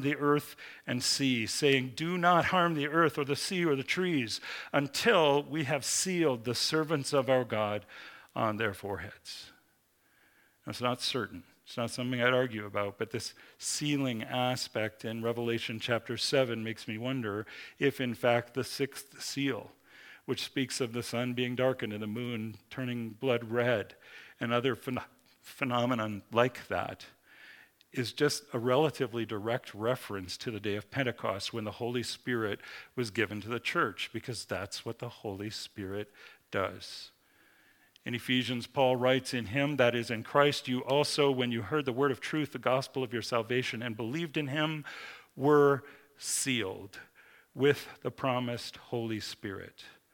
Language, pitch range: English, 115-140 Hz